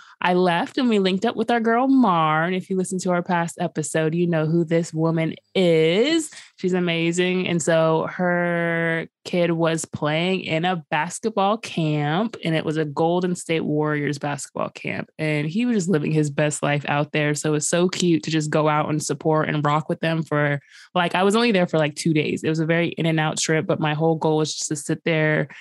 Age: 20-39